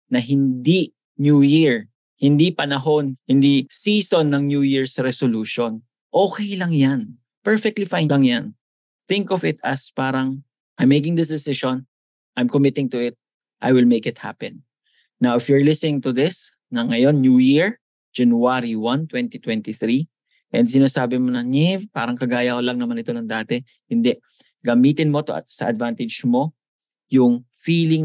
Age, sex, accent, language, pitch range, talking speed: 20-39, male, Filipino, English, 120-150 Hz, 150 wpm